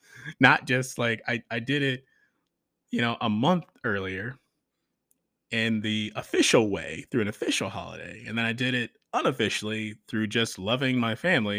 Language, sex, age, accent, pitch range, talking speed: English, male, 30-49, American, 100-130 Hz, 160 wpm